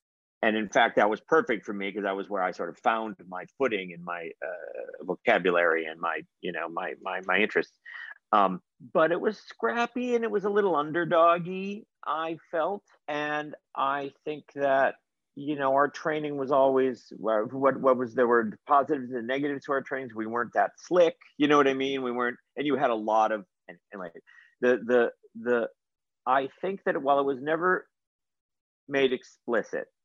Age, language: 50-69, English